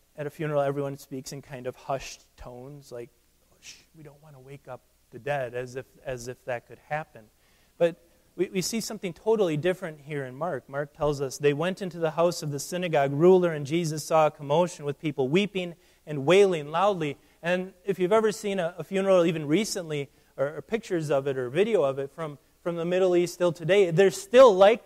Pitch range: 145-190 Hz